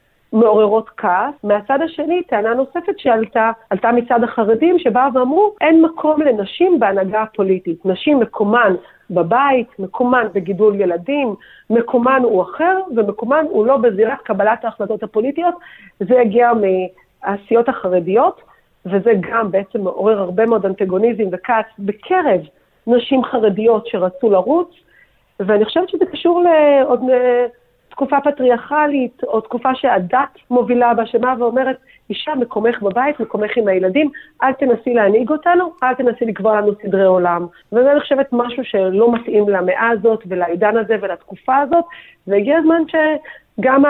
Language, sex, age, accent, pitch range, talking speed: Hebrew, female, 40-59, native, 210-280 Hz, 130 wpm